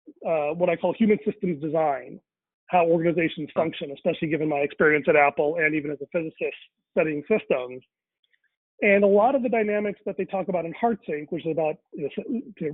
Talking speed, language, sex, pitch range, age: 185 wpm, English, male, 160-215 Hz, 40-59